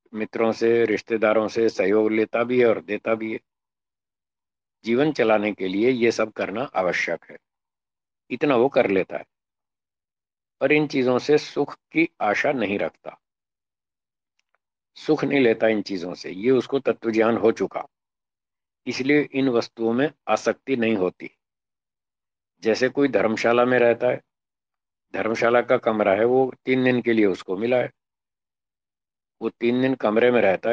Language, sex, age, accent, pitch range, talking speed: Hindi, male, 50-69, native, 110-125 Hz, 150 wpm